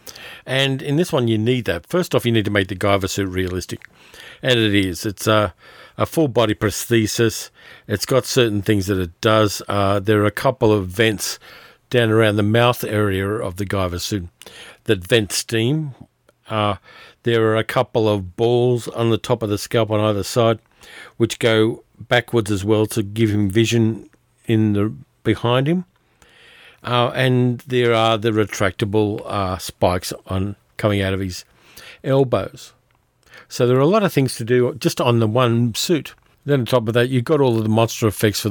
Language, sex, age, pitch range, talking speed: English, male, 50-69, 105-125 Hz, 190 wpm